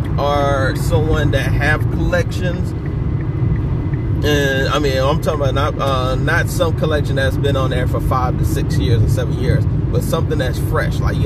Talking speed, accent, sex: 180 wpm, American, male